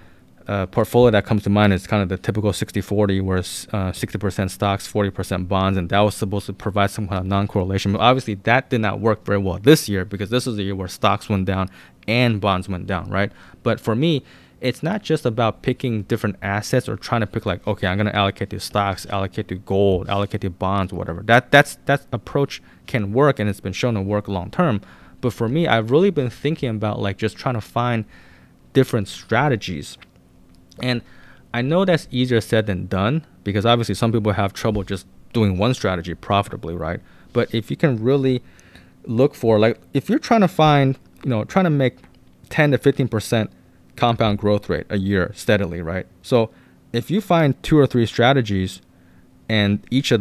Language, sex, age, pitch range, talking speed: English, male, 20-39, 95-125 Hz, 200 wpm